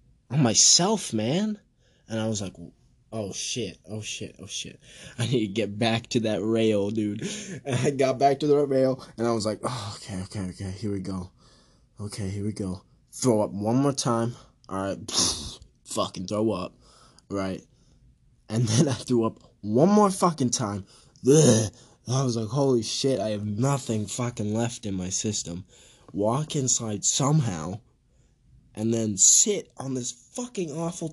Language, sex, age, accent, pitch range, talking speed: English, male, 20-39, American, 110-155 Hz, 170 wpm